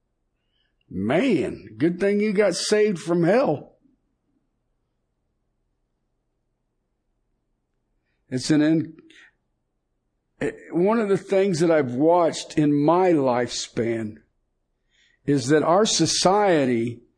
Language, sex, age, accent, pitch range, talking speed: English, male, 60-79, American, 130-185 Hz, 85 wpm